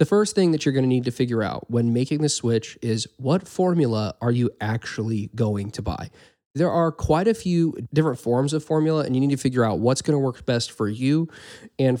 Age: 20-39